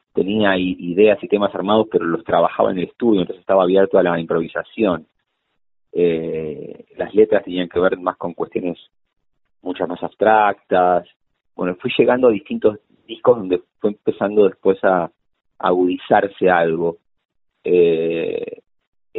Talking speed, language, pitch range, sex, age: 135 wpm, Spanish, 90-105 Hz, male, 30-49